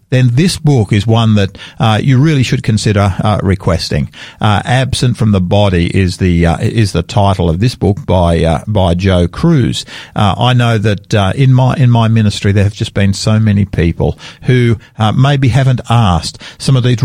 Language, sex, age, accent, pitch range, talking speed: English, male, 50-69, Australian, 100-130 Hz, 200 wpm